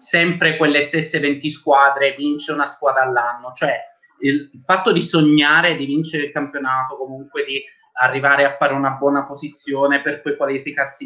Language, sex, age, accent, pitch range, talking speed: Italian, male, 30-49, native, 135-185 Hz, 155 wpm